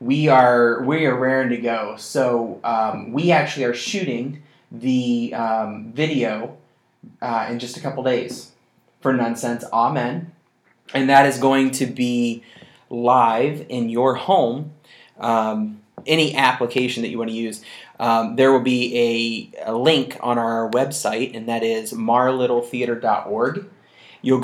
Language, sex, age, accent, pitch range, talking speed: English, male, 30-49, American, 120-140 Hz, 140 wpm